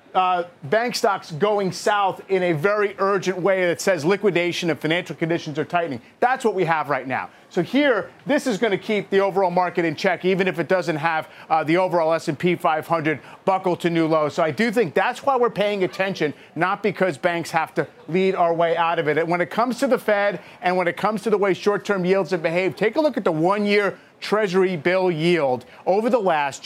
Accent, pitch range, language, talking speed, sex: American, 170-210 Hz, English, 230 wpm, male